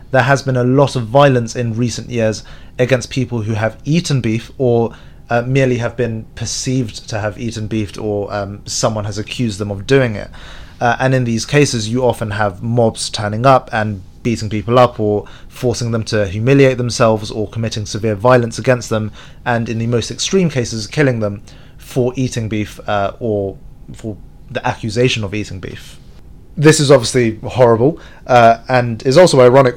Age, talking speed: 30-49, 180 wpm